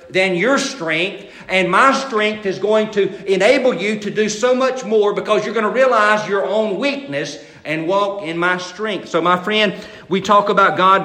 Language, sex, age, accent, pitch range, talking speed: English, male, 50-69, American, 165-205 Hz, 195 wpm